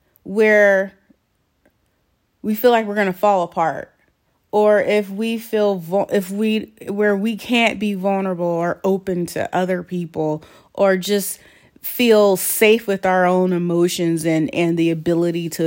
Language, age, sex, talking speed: English, 30-49, female, 140 wpm